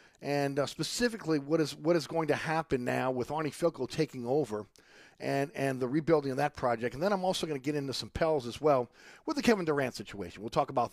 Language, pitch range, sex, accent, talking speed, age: English, 120-150 Hz, male, American, 235 wpm, 40-59